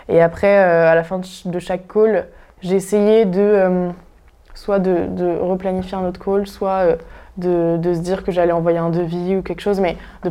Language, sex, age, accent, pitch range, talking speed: French, female, 20-39, French, 175-195 Hz, 210 wpm